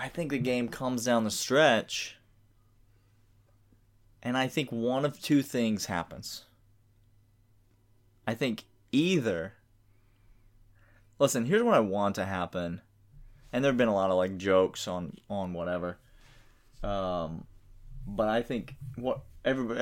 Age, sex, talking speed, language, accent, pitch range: 20-39, male, 130 wpm, English, American, 95-115 Hz